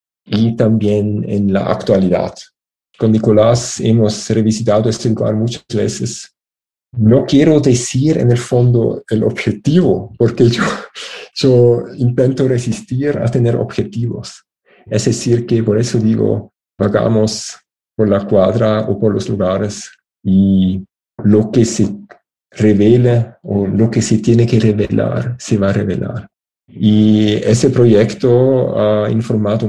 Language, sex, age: Spanish, male, 50-69